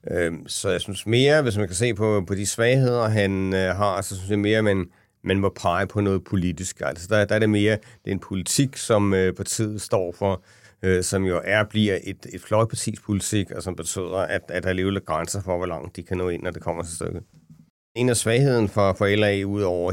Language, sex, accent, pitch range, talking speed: Danish, male, native, 90-110 Hz, 235 wpm